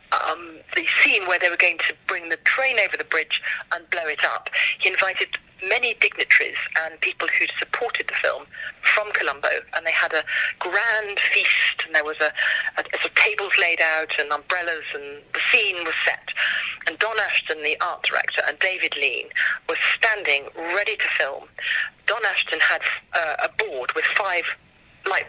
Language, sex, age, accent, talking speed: English, female, 40-59, British, 185 wpm